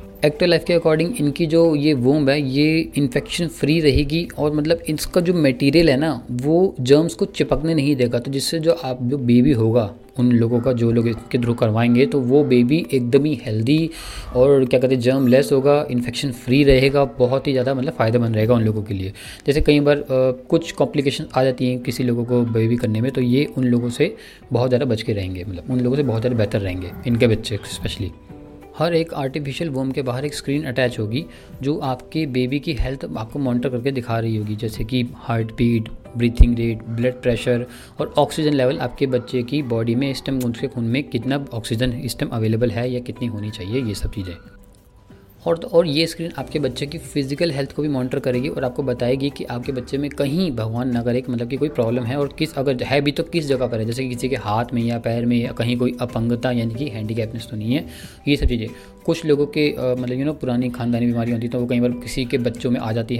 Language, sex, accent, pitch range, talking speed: Hindi, male, native, 120-145 Hz, 225 wpm